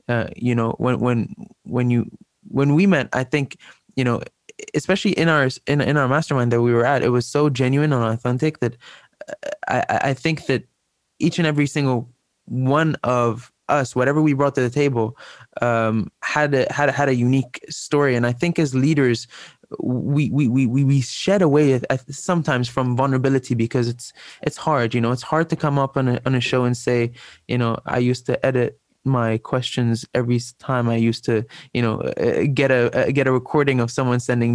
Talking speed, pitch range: 200 wpm, 120-145 Hz